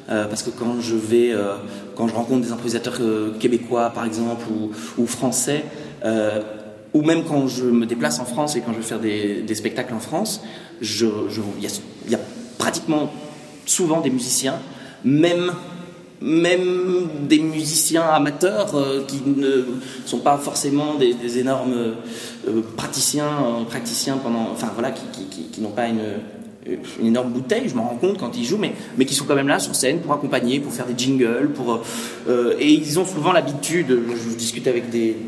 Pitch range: 115-150 Hz